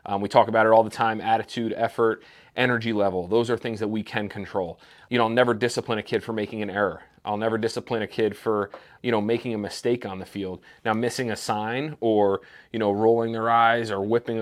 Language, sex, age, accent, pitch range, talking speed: English, male, 30-49, American, 105-120 Hz, 235 wpm